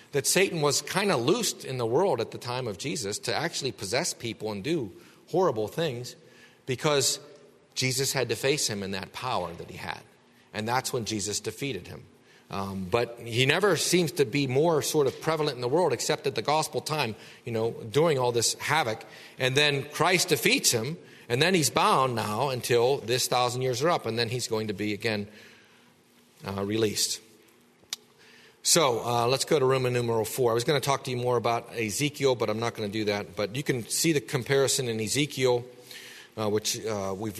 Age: 40-59